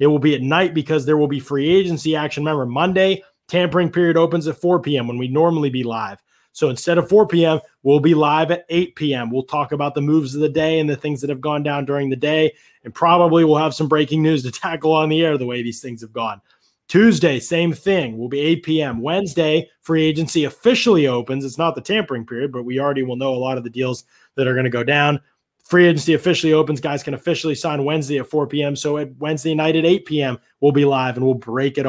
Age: 20-39